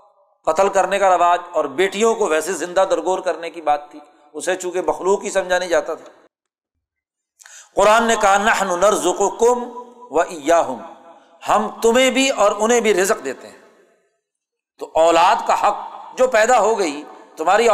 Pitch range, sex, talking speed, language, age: 175-245 Hz, male, 160 wpm, Urdu, 50-69